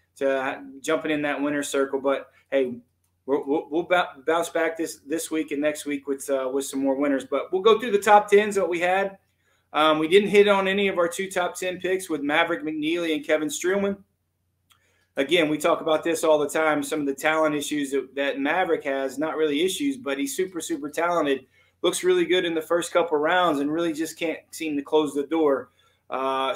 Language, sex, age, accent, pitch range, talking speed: English, male, 30-49, American, 140-175 Hz, 210 wpm